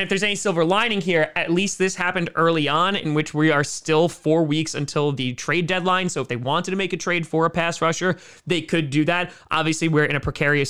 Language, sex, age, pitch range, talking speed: English, male, 20-39, 150-180 Hz, 245 wpm